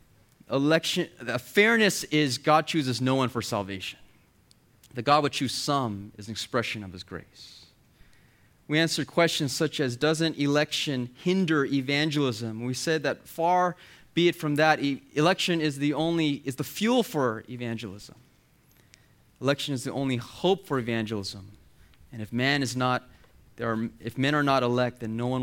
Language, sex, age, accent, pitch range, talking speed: English, male, 30-49, American, 125-170 Hz, 165 wpm